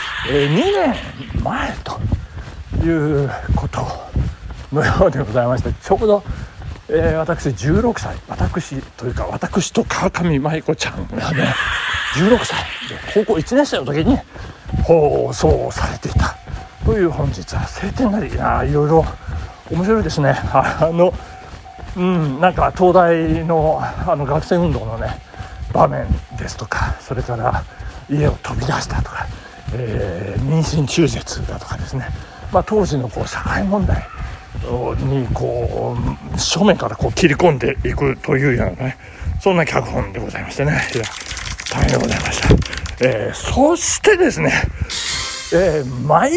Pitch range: 120-180 Hz